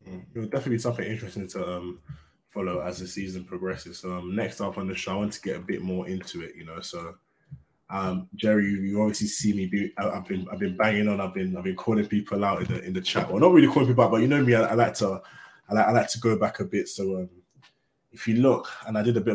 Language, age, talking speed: English, 20-39, 280 wpm